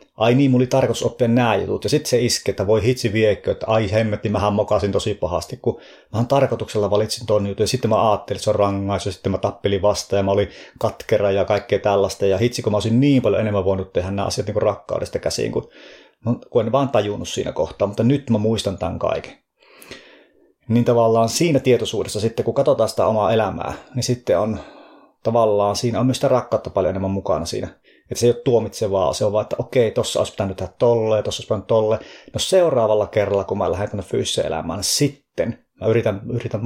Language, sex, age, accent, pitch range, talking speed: Finnish, male, 30-49, native, 100-120 Hz, 215 wpm